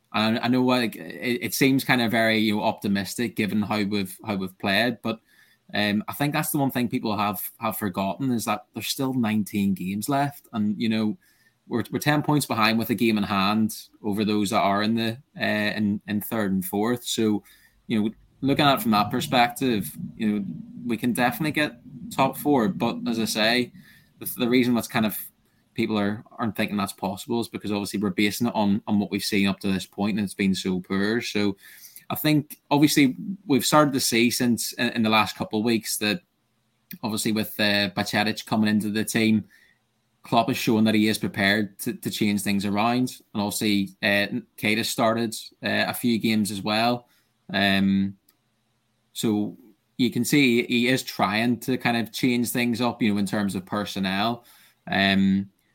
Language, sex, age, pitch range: English, male, 20-39, 105-120 Hz